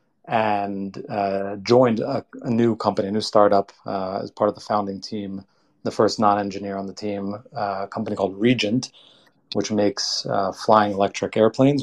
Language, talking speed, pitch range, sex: Hebrew, 180 wpm, 100-120 Hz, male